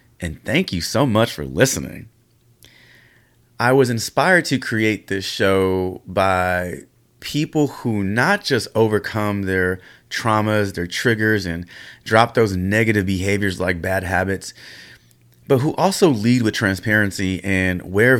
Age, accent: 30-49, American